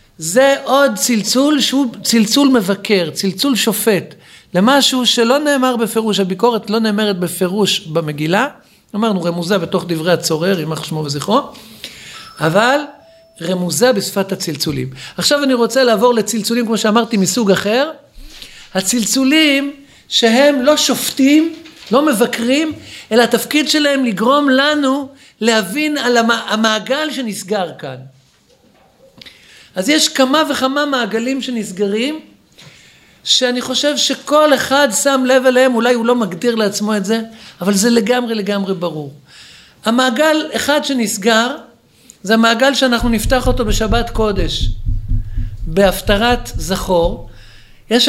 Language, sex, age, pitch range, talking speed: Hebrew, male, 50-69, 200-265 Hz, 115 wpm